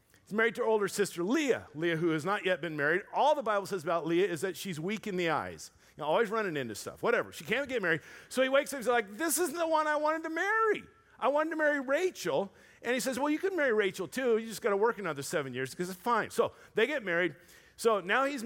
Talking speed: 265 wpm